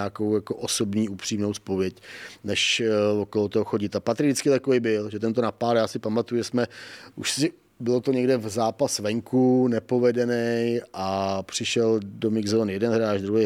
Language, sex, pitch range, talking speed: Czech, male, 105-115 Hz, 175 wpm